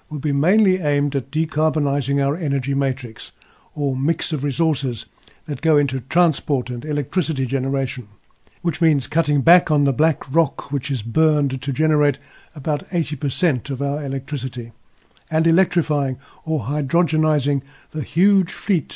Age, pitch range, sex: 60-79, 140-165 Hz, male